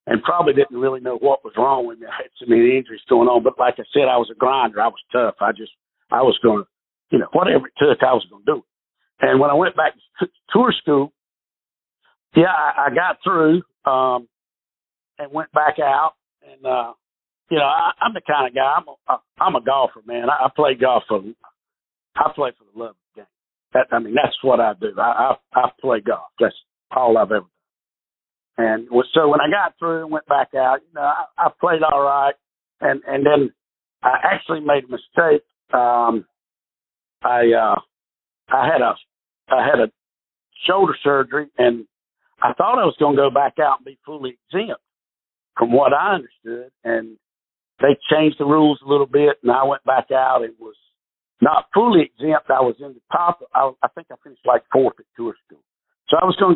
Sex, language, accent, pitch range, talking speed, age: male, English, American, 115-155 Hz, 210 wpm, 50-69